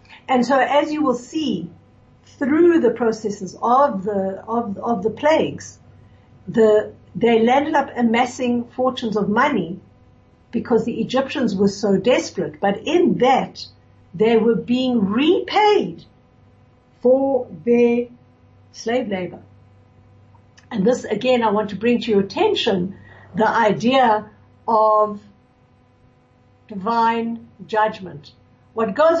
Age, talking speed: 60-79, 115 wpm